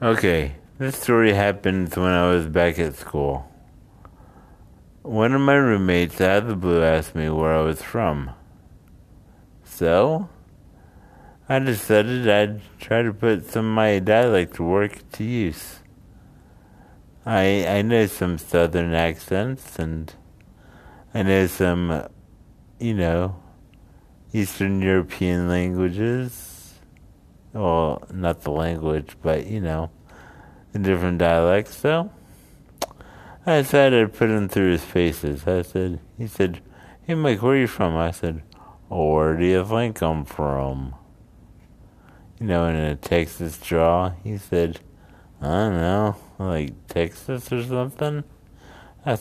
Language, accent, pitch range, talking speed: English, American, 85-110 Hz, 130 wpm